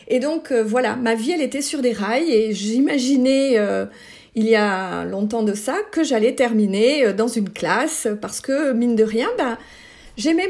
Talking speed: 175 wpm